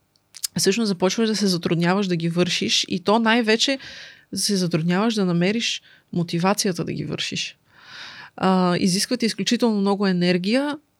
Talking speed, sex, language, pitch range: 130 wpm, female, Bulgarian, 175-210 Hz